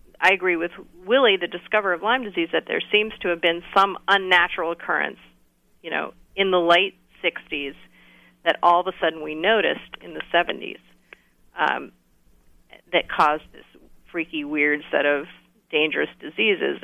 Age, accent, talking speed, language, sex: 40-59, American, 155 wpm, English, female